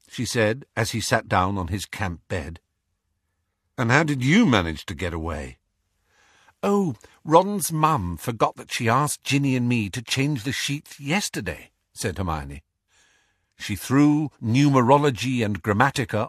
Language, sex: English, male